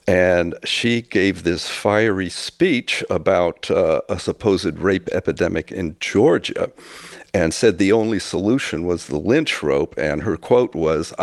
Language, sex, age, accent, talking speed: English, male, 60-79, American, 145 wpm